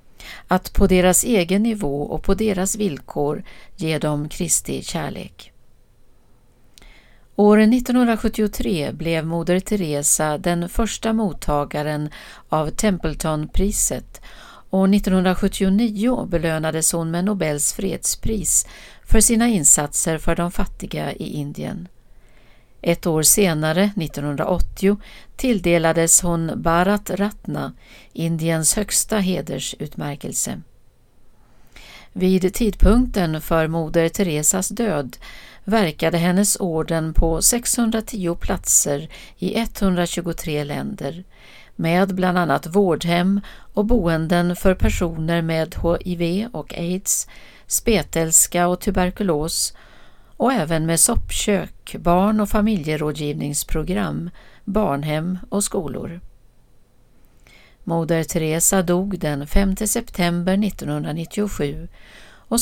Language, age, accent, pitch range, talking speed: Swedish, 60-79, native, 160-200 Hz, 95 wpm